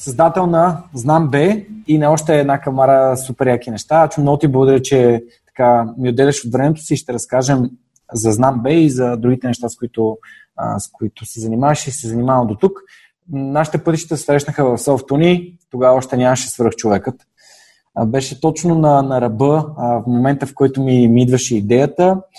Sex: male